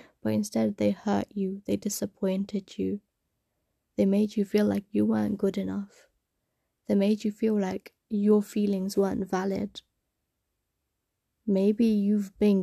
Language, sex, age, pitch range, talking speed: English, female, 20-39, 190-215 Hz, 140 wpm